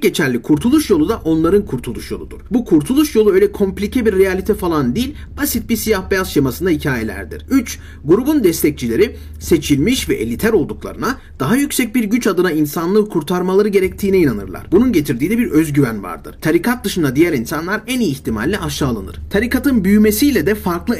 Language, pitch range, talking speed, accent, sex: Turkish, 160-230 Hz, 160 wpm, native, male